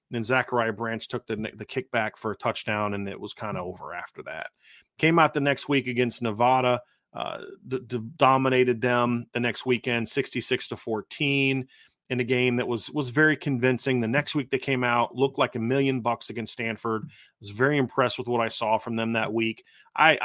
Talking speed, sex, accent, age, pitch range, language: 210 wpm, male, American, 30-49, 115-135 Hz, English